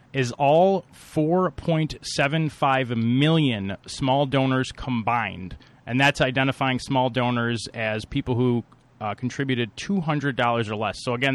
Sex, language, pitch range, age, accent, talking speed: male, English, 125-145 Hz, 30-49, American, 115 wpm